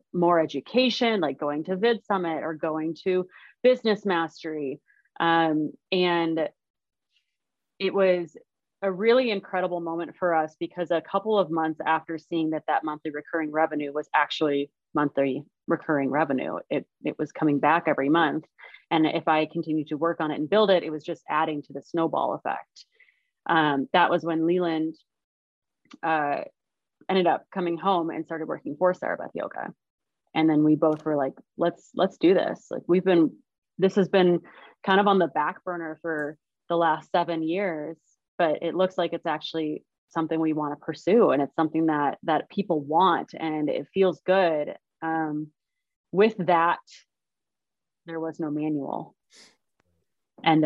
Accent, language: American, English